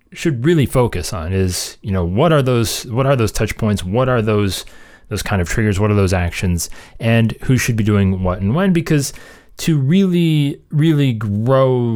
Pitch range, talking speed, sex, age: 95-130 Hz, 195 wpm, male, 30-49